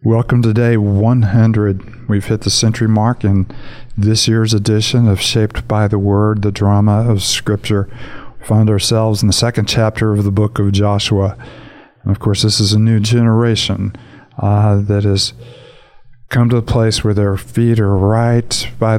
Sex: male